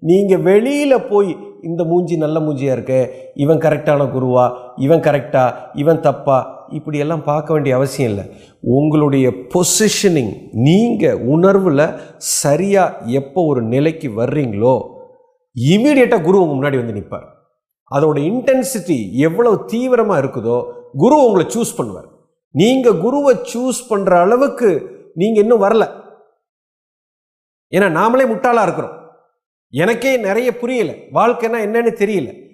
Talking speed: 115 wpm